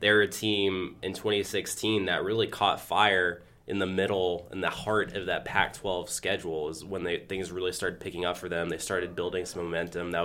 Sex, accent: male, American